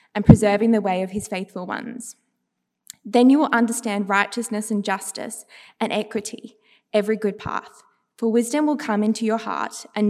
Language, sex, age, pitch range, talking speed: English, female, 20-39, 205-240 Hz, 165 wpm